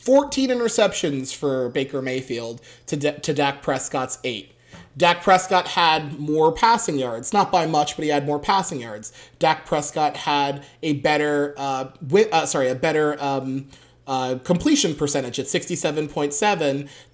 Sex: male